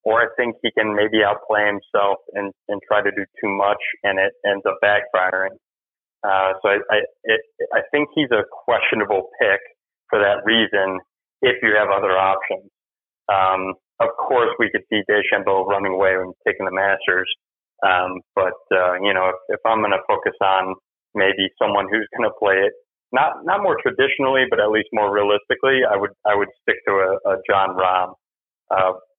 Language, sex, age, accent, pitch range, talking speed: English, male, 30-49, American, 95-110 Hz, 185 wpm